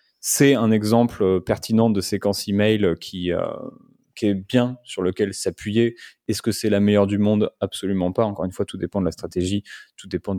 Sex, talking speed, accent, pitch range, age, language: male, 195 wpm, French, 90-110 Hz, 20-39, French